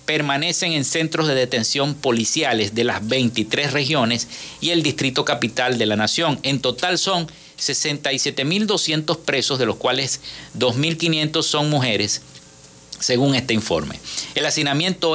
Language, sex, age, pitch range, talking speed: Spanish, male, 50-69, 110-150 Hz, 130 wpm